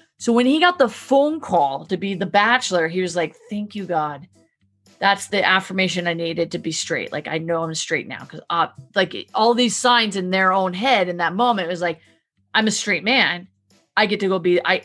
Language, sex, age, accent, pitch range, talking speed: English, female, 30-49, American, 170-210 Hz, 225 wpm